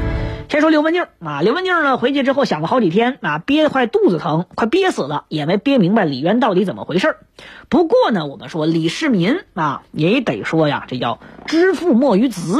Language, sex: Chinese, female